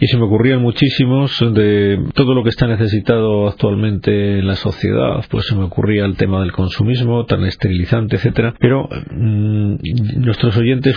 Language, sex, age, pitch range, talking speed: Spanish, male, 40-59, 105-120 Hz, 165 wpm